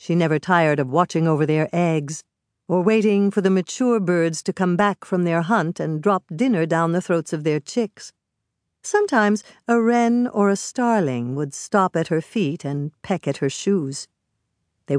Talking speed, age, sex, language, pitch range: 185 wpm, 60-79, female, English, 150-215 Hz